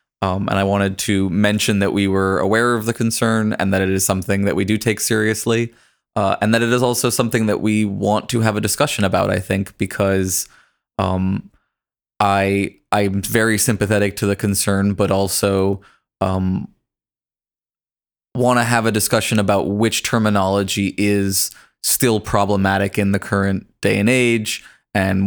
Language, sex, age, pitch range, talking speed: English, male, 20-39, 95-110 Hz, 165 wpm